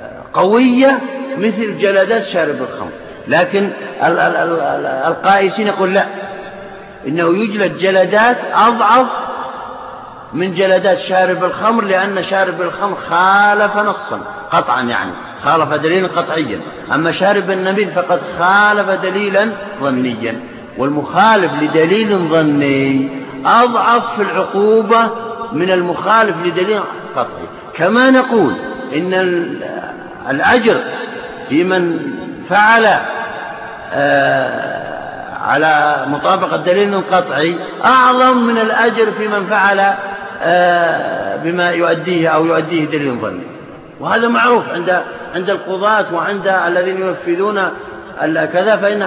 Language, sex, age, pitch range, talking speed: Arabic, male, 50-69, 175-220 Hz, 100 wpm